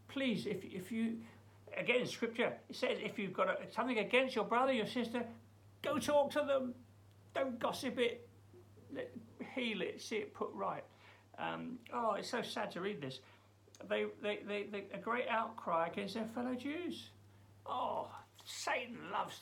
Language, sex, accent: English, male, British